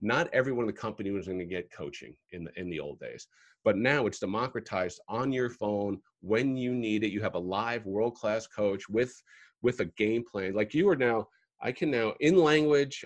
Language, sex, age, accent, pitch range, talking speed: English, male, 40-59, American, 105-140 Hz, 210 wpm